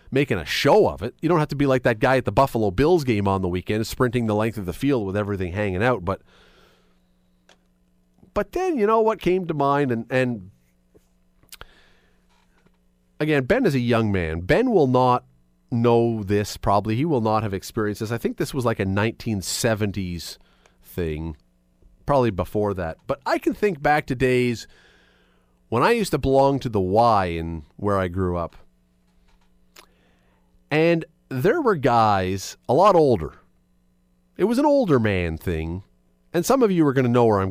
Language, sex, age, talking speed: English, male, 40-59, 180 wpm